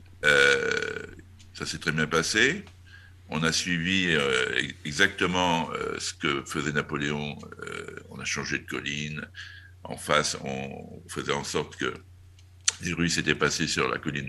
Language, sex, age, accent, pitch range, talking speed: French, male, 60-79, French, 80-90 Hz, 150 wpm